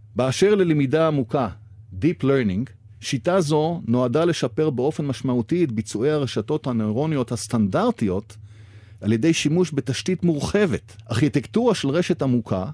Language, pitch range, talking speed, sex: Hebrew, 110-150 Hz, 120 wpm, male